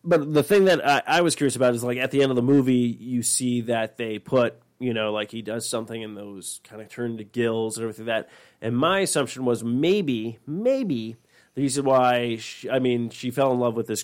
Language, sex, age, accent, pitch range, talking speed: English, male, 30-49, American, 115-140 Hz, 245 wpm